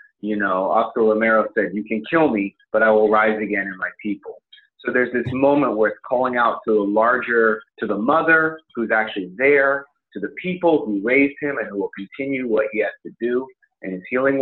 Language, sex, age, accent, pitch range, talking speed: English, male, 30-49, American, 100-135 Hz, 215 wpm